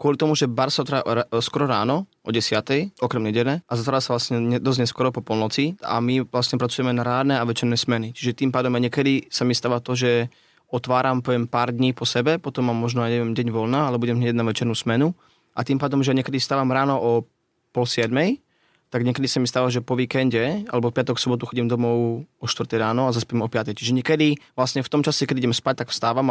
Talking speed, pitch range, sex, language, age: 220 wpm, 120-140 Hz, male, Slovak, 20-39